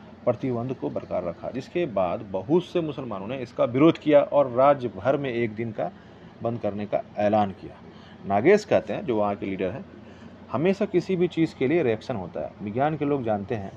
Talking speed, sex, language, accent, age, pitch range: 205 wpm, male, Hindi, native, 30-49, 110-145 Hz